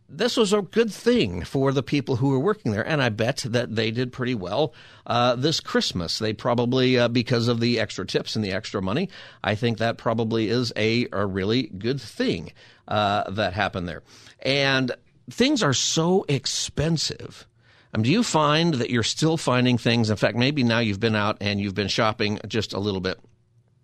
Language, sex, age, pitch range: English, male, 50-69, 105-130 Hz